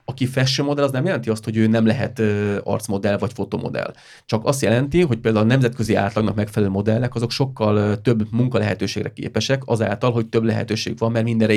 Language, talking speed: Hungarian, 185 wpm